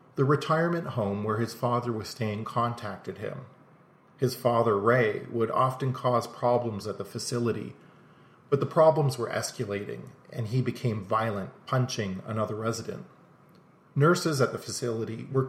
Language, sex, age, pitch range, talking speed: English, male, 40-59, 110-140 Hz, 145 wpm